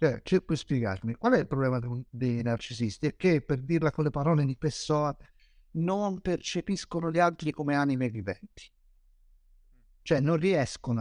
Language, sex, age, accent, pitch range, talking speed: Italian, male, 50-69, native, 115-170 Hz, 160 wpm